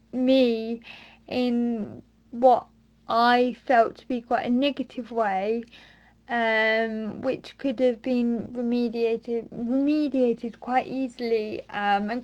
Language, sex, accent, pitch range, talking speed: English, female, British, 235-290 Hz, 110 wpm